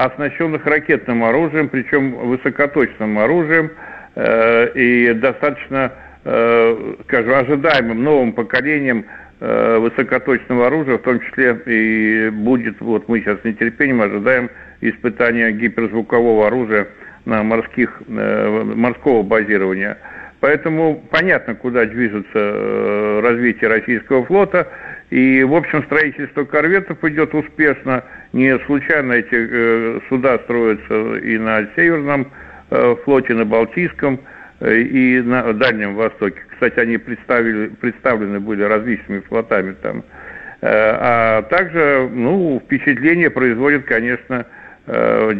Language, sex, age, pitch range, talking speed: Russian, male, 60-79, 110-140 Hz, 110 wpm